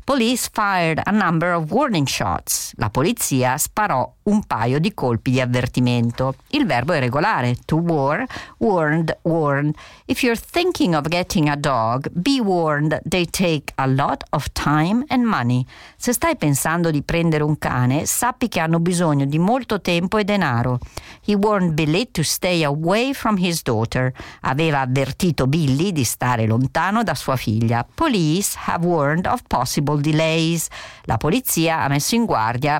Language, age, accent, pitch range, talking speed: Italian, 50-69, native, 130-205 Hz, 160 wpm